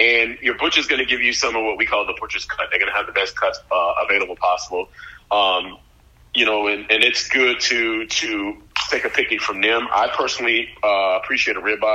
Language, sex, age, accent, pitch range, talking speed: English, male, 30-49, American, 105-120 Hz, 215 wpm